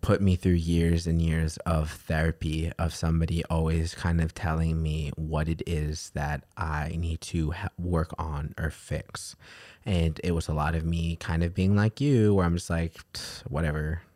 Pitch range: 80-90 Hz